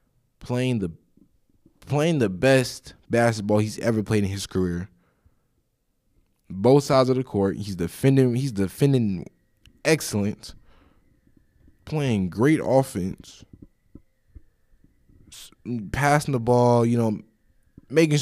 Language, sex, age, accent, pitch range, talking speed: English, male, 20-39, American, 100-130 Hz, 100 wpm